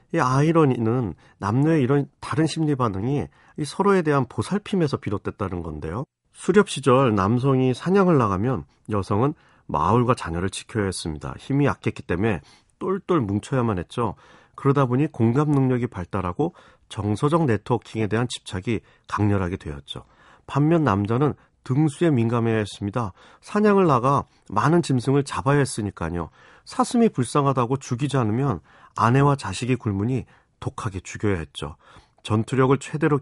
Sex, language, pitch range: male, Korean, 100-140 Hz